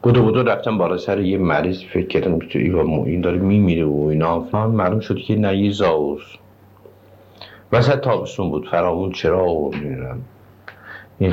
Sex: male